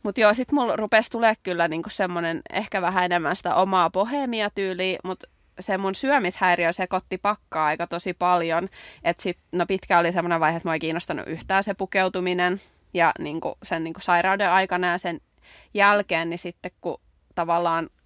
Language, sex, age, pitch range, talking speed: Finnish, female, 20-39, 170-195 Hz, 170 wpm